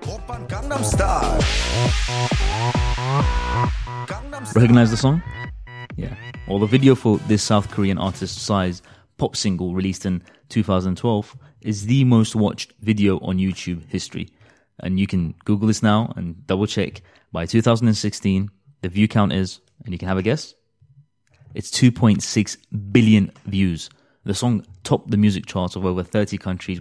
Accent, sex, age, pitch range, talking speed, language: British, male, 20-39, 95-115 Hz, 135 wpm, English